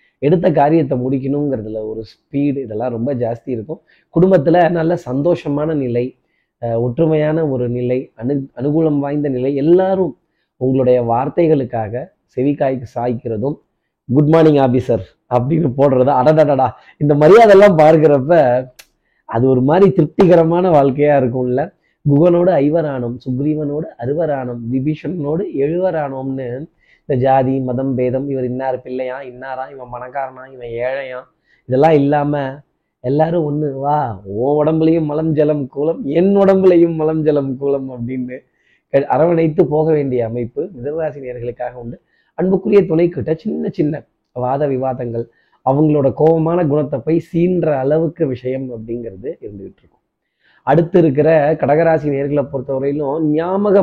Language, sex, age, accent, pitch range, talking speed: Tamil, male, 30-49, native, 130-160 Hz, 115 wpm